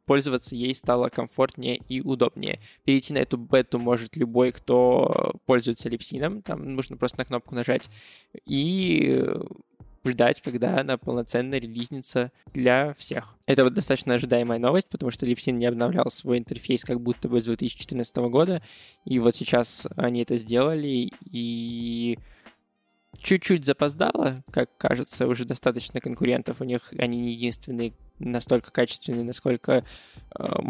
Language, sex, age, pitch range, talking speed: Russian, male, 20-39, 120-135 Hz, 135 wpm